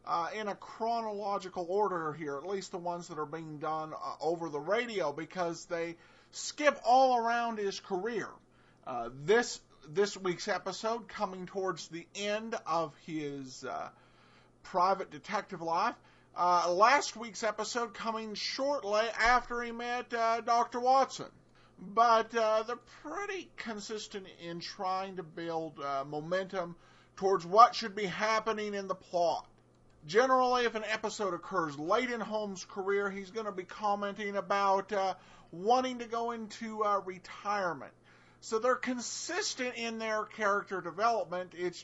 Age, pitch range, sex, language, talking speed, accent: 40-59, 180-230 Hz, male, English, 145 wpm, American